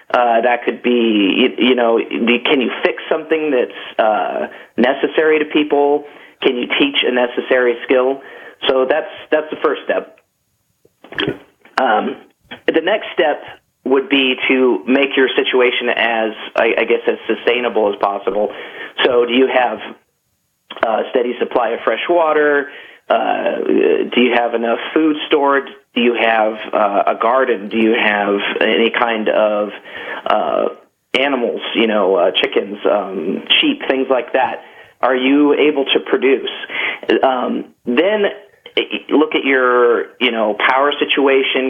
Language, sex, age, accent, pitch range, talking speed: English, male, 40-59, American, 120-155 Hz, 145 wpm